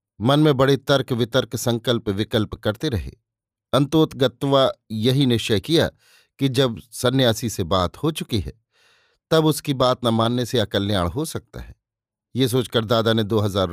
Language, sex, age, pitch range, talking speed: Hindi, male, 50-69, 105-135 Hz, 155 wpm